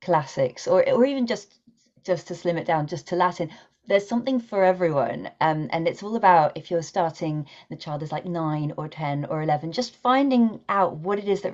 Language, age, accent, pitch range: English, 30-49, British, 145-180 Hz